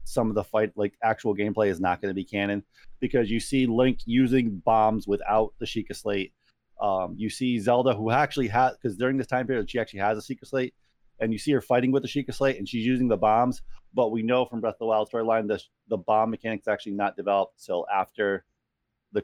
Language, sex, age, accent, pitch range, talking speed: English, male, 30-49, American, 110-130 Hz, 235 wpm